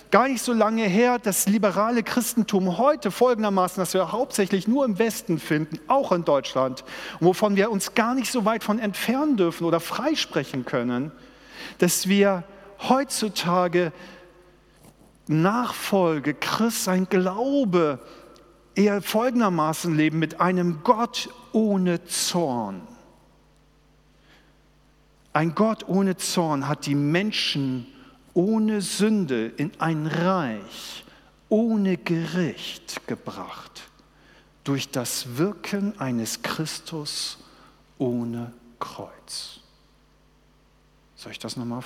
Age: 50-69